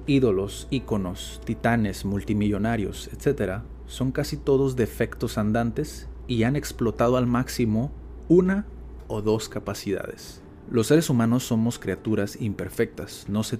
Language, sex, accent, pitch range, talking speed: Spanish, male, Mexican, 105-130 Hz, 120 wpm